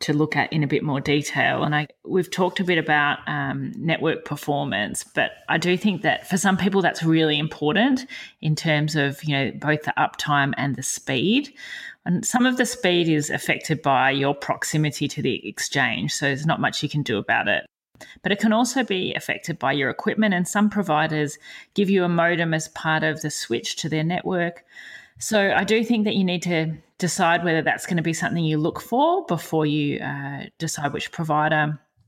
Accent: Australian